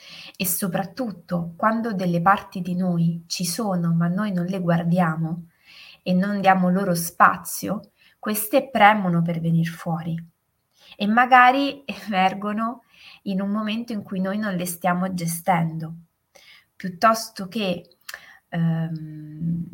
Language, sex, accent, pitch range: Italian, female, native, 175-215 Hz